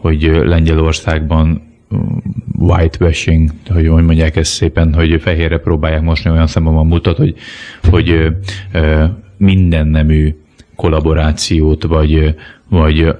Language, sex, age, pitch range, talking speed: Hungarian, male, 30-49, 80-90 Hz, 105 wpm